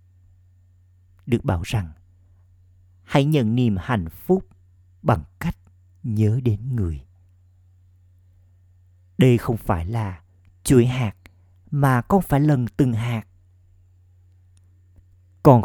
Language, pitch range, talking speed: Vietnamese, 90-115 Hz, 100 wpm